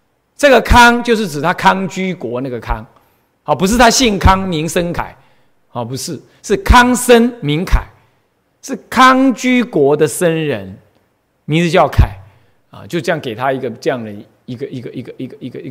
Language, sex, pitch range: Chinese, male, 125-180 Hz